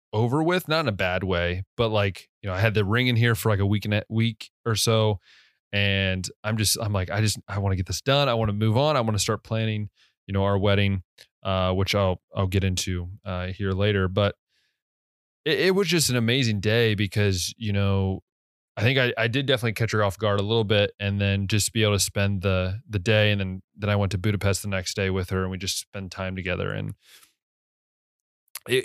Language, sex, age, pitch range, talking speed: English, male, 20-39, 95-115 Hz, 240 wpm